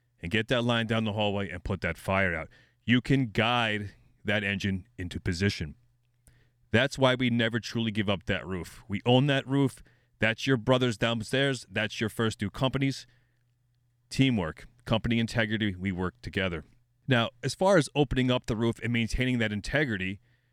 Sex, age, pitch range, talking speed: male, 30-49, 110-130 Hz, 170 wpm